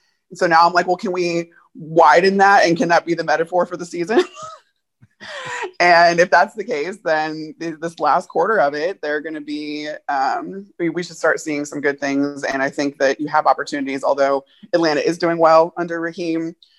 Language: English